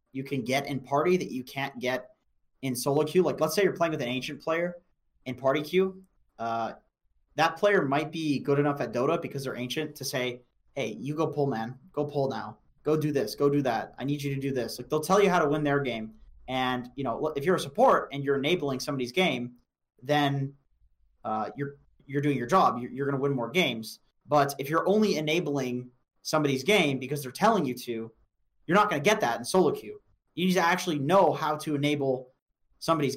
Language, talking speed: English, 220 wpm